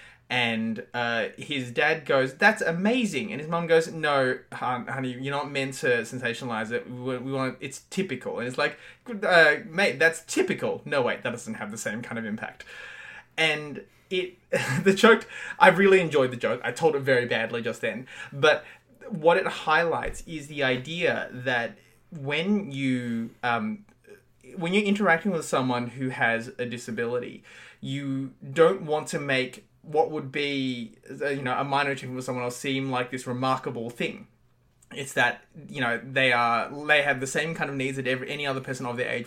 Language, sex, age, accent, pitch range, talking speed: English, male, 20-39, Australian, 125-155 Hz, 185 wpm